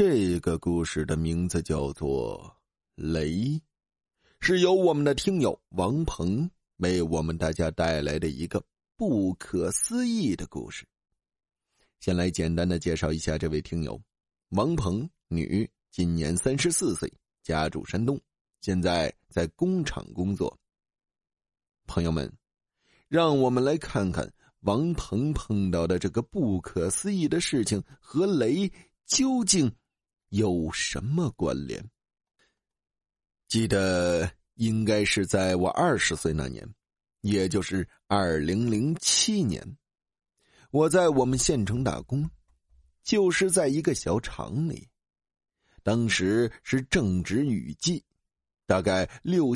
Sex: male